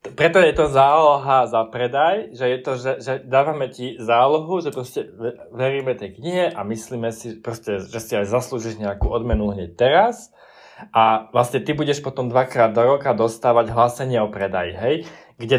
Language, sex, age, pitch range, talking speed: Slovak, male, 20-39, 110-135 Hz, 170 wpm